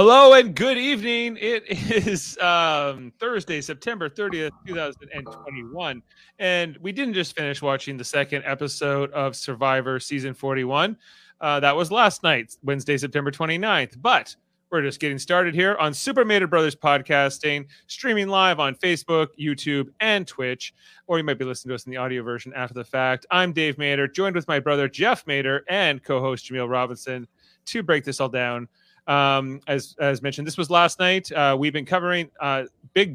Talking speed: 175 wpm